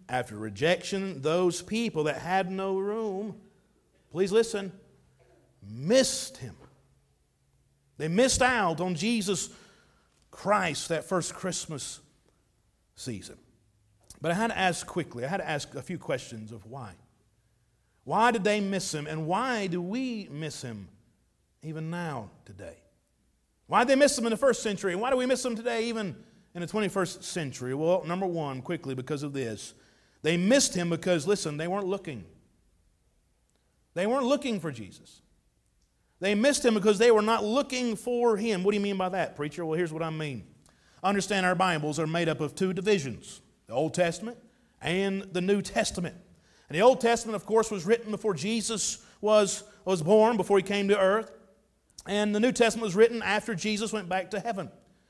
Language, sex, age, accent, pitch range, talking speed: English, male, 50-69, American, 150-215 Hz, 175 wpm